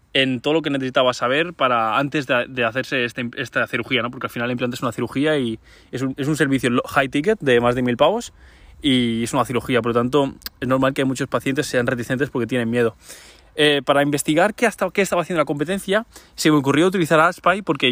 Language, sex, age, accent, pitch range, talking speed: Spanish, male, 20-39, Spanish, 125-165 Hz, 230 wpm